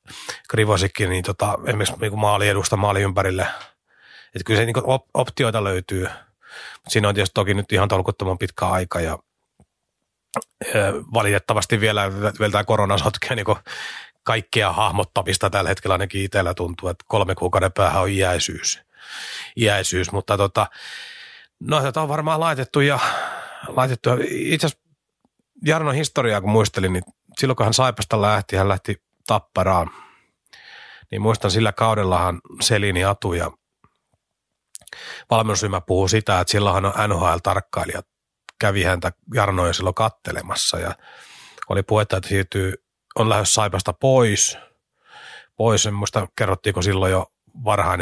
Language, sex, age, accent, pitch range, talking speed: Finnish, male, 30-49, native, 95-110 Hz, 130 wpm